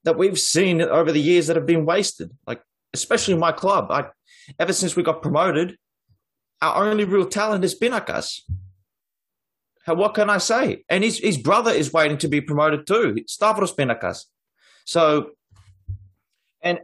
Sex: male